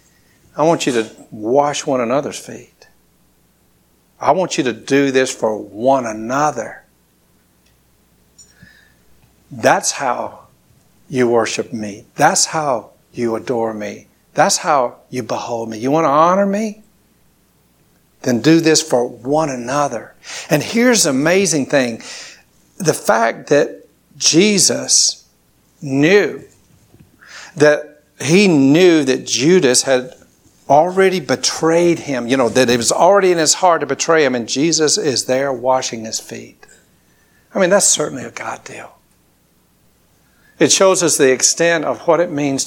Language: English